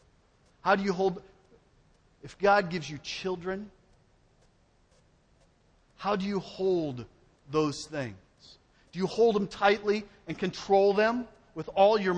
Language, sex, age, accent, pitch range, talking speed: English, male, 40-59, American, 150-215 Hz, 130 wpm